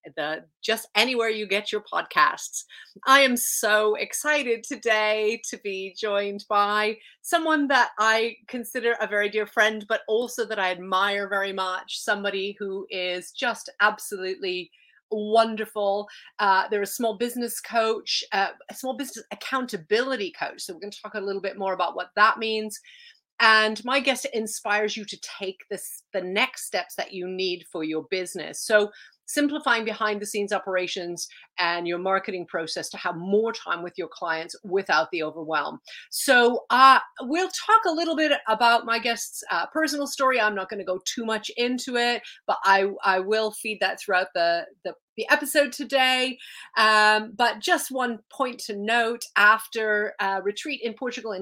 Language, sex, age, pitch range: English, female, 30-49, 200-255 Hz